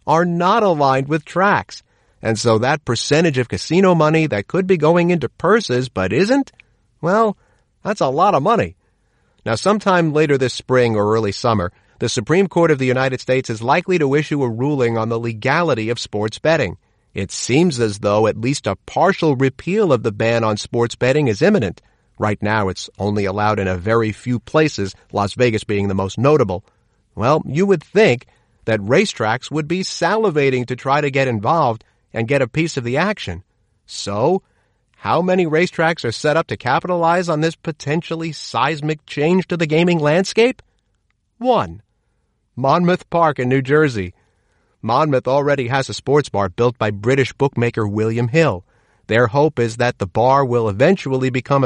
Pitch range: 110-160 Hz